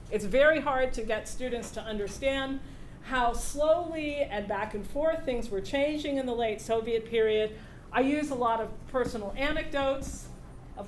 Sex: female